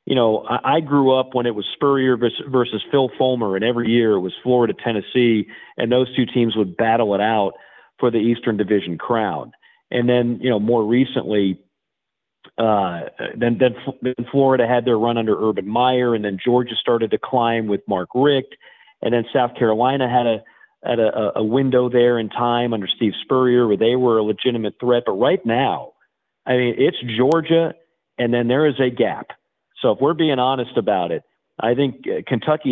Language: English